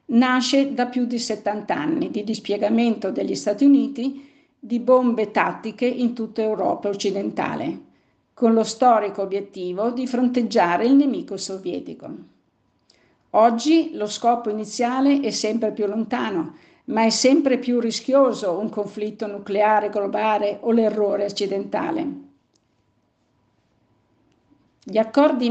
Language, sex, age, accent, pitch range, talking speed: Italian, female, 50-69, native, 210-255 Hz, 115 wpm